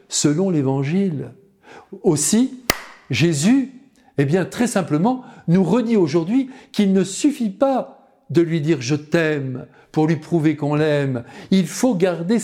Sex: male